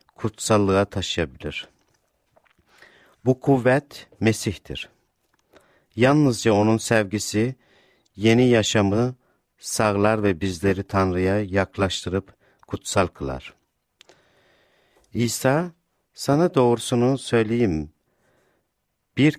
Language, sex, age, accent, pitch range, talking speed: Turkish, male, 60-79, native, 100-125 Hz, 70 wpm